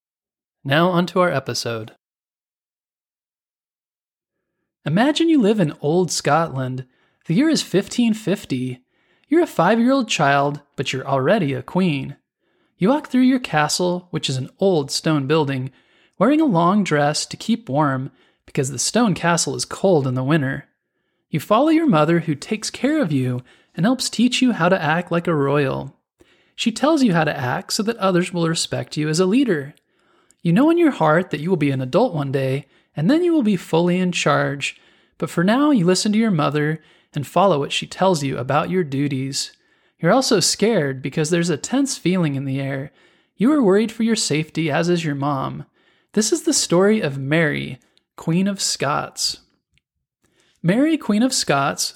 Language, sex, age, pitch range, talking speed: English, male, 20-39, 145-215 Hz, 180 wpm